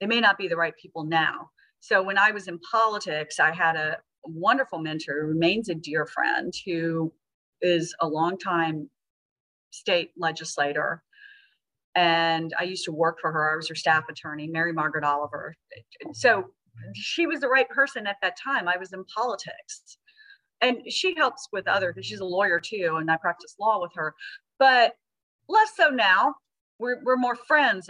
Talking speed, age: 175 wpm, 40-59